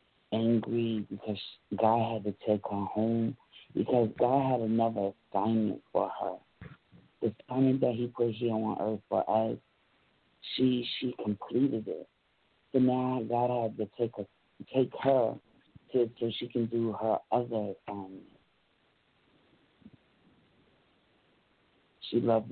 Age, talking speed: 60-79, 130 wpm